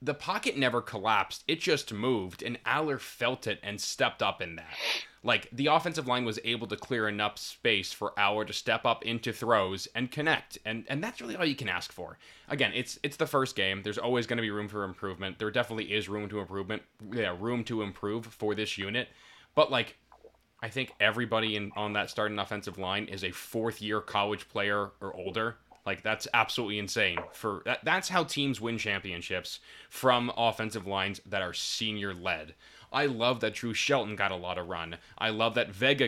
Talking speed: 200 wpm